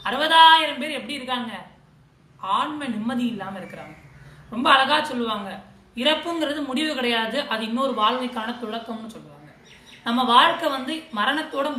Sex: female